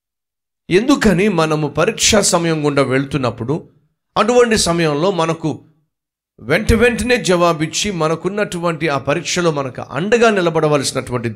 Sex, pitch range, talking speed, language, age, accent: male, 125-180 Hz, 95 wpm, Telugu, 50-69, native